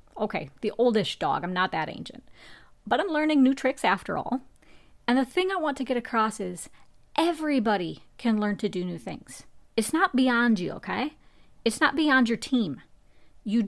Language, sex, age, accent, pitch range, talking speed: English, female, 40-59, American, 205-270 Hz, 185 wpm